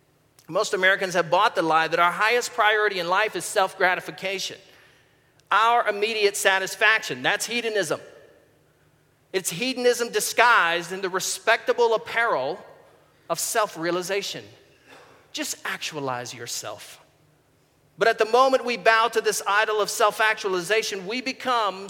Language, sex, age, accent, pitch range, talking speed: English, male, 40-59, American, 175-230 Hz, 120 wpm